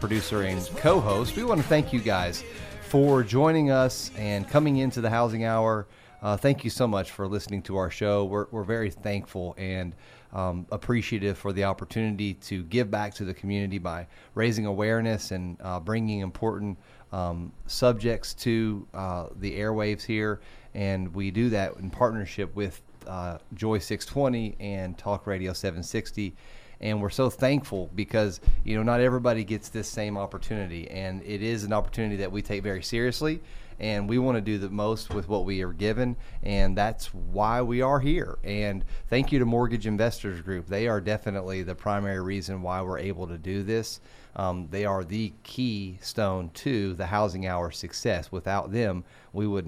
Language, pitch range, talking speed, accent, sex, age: English, 95-115 Hz, 180 wpm, American, male, 30-49